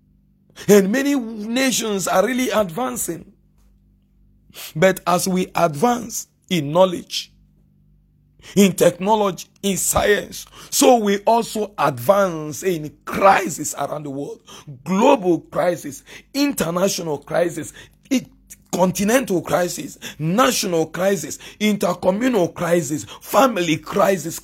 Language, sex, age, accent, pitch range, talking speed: English, male, 50-69, Nigerian, 180-245 Hz, 95 wpm